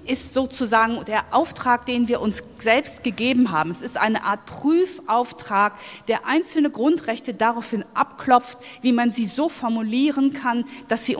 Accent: German